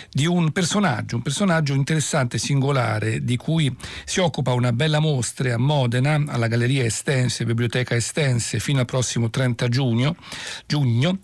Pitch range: 120-150 Hz